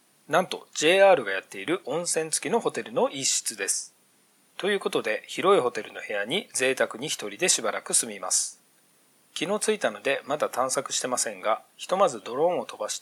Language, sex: Japanese, male